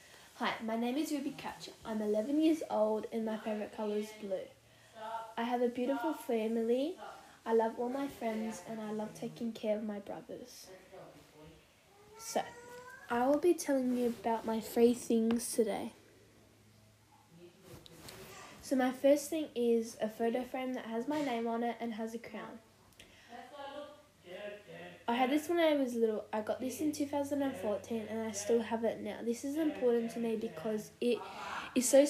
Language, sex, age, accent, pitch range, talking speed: English, female, 10-29, Australian, 215-260 Hz, 170 wpm